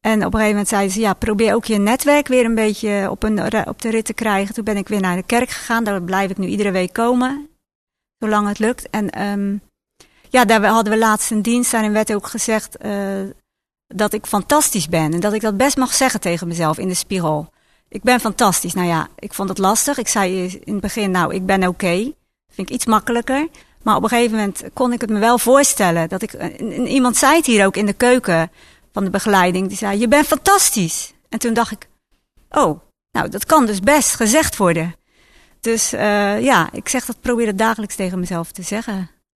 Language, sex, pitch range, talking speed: Dutch, female, 190-230 Hz, 230 wpm